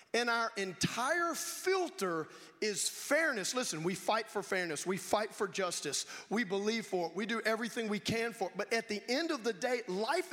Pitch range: 210-275 Hz